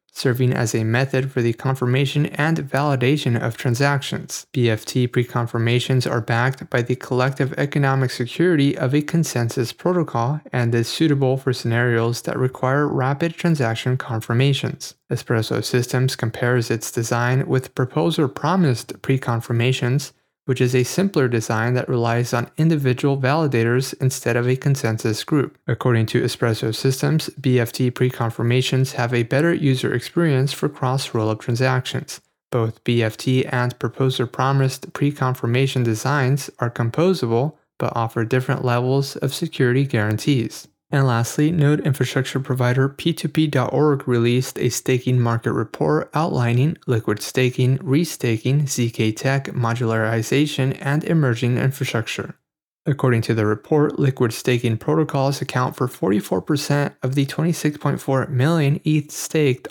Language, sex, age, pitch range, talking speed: English, male, 30-49, 120-145 Hz, 125 wpm